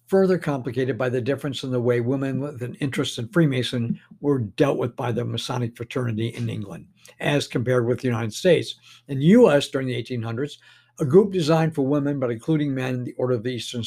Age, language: 60-79, English